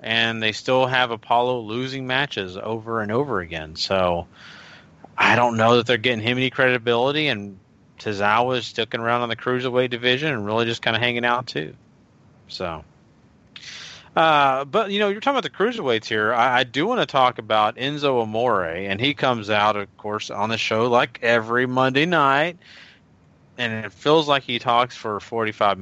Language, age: English, 30-49